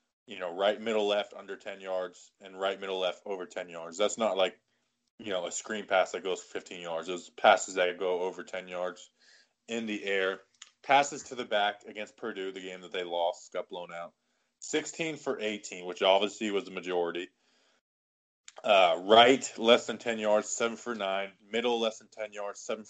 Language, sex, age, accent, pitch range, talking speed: English, male, 20-39, American, 95-120 Hz, 195 wpm